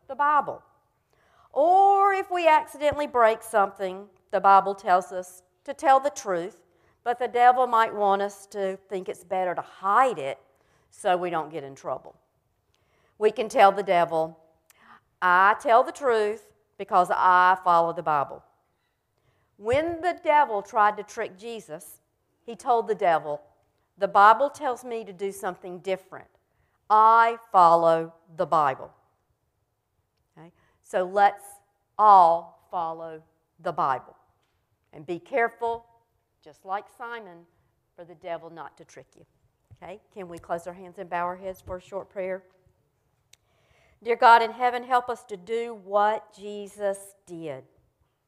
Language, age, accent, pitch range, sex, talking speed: English, 50-69, American, 170-230 Hz, female, 145 wpm